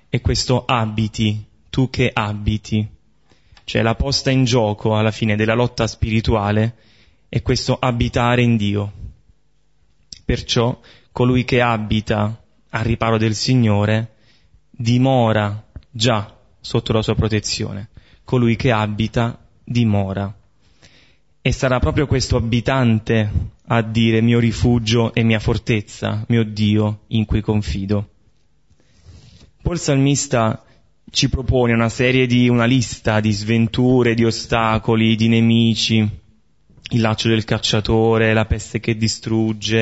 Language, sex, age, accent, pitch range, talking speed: Italian, male, 20-39, native, 110-125 Hz, 120 wpm